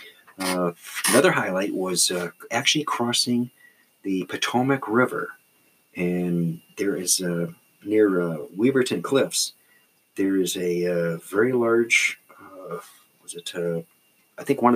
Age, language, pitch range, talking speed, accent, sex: 40-59, English, 90-120 Hz, 125 wpm, American, male